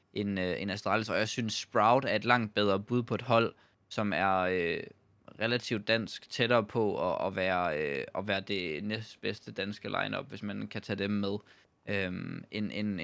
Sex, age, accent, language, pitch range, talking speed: male, 20-39, native, Danish, 100-125 Hz, 180 wpm